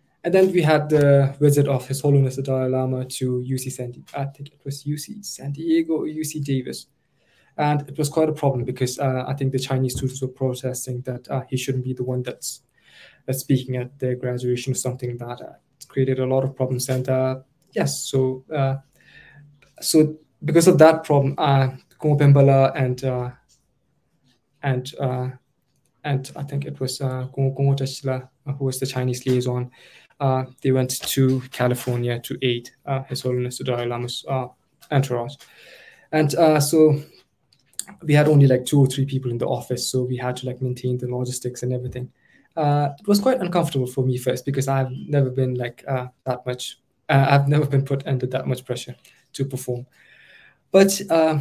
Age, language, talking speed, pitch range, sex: 20-39, English, 185 wpm, 125-145 Hz, male